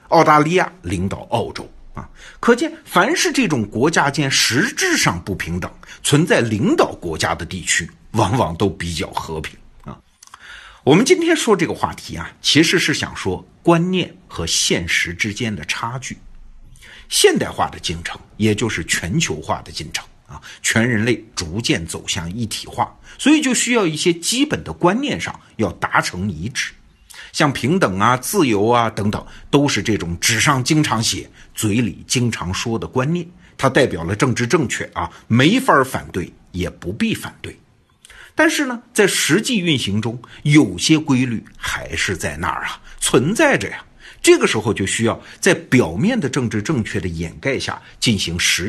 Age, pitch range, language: 50-69, 100-165 Hz, Chinese